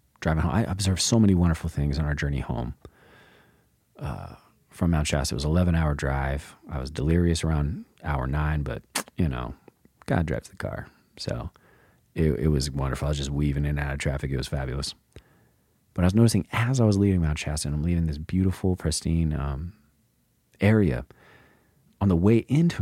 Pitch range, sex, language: 75-95 Hz, male, English